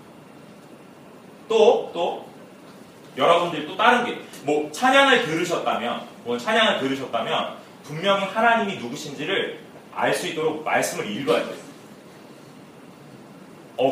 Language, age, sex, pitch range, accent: Korean, 30-49, male, 195-280 Hz, native